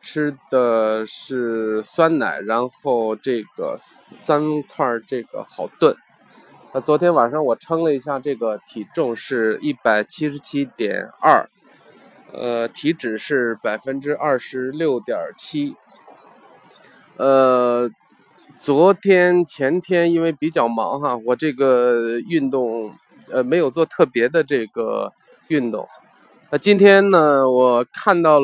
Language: Chinese